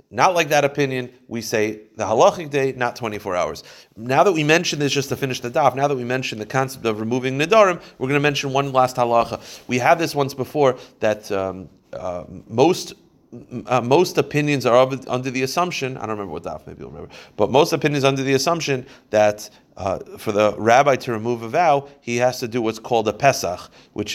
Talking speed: 215 wpm